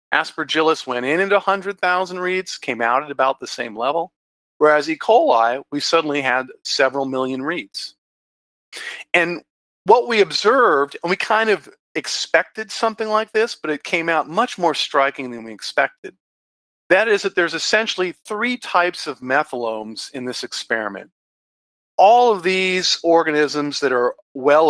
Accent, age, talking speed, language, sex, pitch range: American, 40-59, 155 wpm, English, male, 125-175 Hz